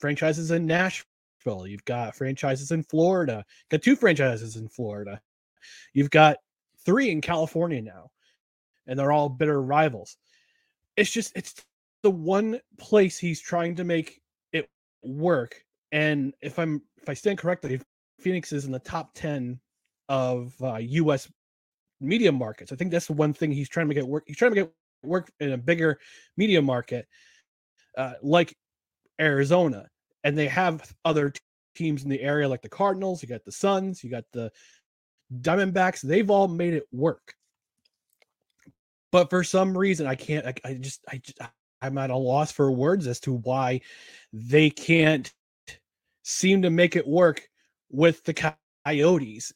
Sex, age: male, 30-49